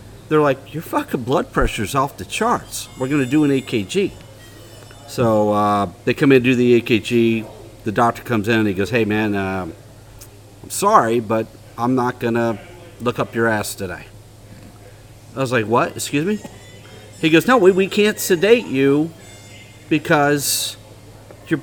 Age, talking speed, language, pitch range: 40-59, 165 wpm, English, 110-155 Hz